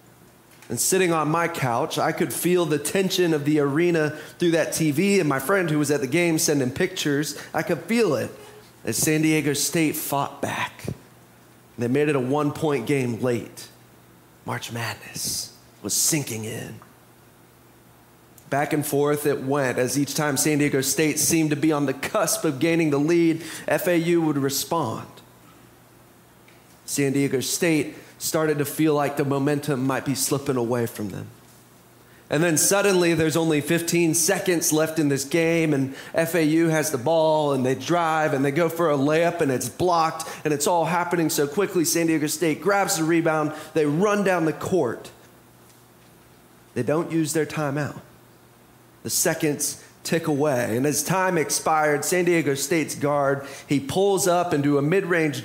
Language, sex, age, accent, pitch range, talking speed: English, male, 30-49, American, 140-165 Hz, 170 wpm